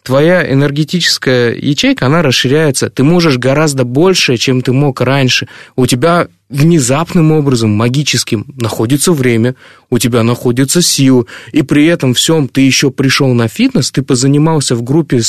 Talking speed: 145 wpm